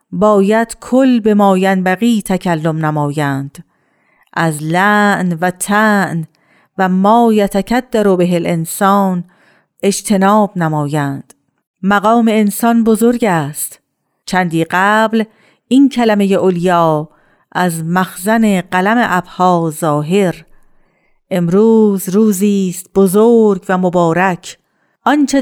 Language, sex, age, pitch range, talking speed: Persian, female, 50-69, 175-215 Hz, 90 wpm